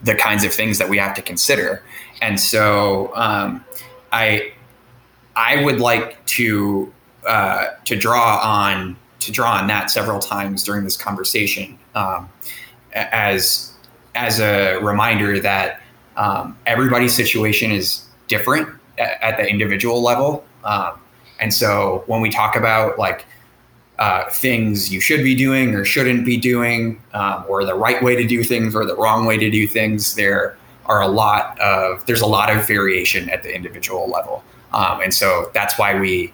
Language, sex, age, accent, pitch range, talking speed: English, male, 20-39, American, 100-120 Hz, 165 wpm